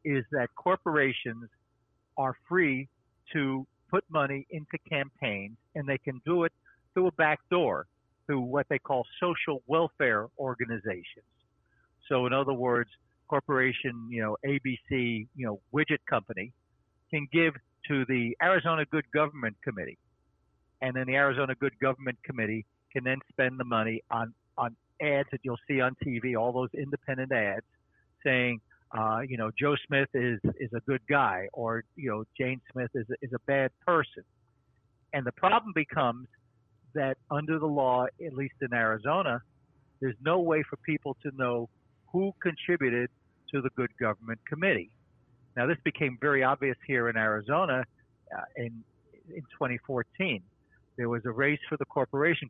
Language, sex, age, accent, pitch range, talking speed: English, male, 60-79, American, 120-145 Hz, 155 wpm